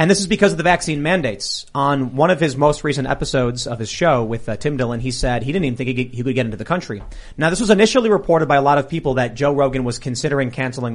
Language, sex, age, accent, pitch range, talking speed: English, male, 30-49, American, 130-170 Hz, 280 wpm